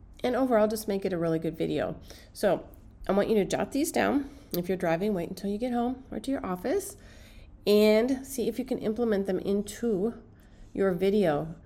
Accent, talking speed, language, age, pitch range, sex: American, 200 wpm, English, 40-59, 160-215 Hz, female